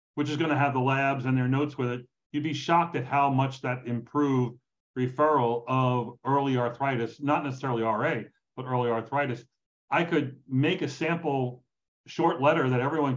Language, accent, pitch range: English, American, 130-155 Hz